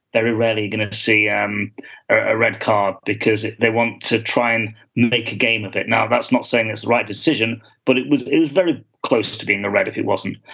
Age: 40-59